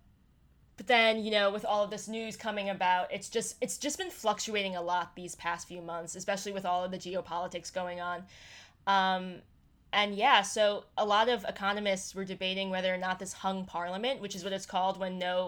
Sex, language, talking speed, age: female, English, 210 wpm, 10-29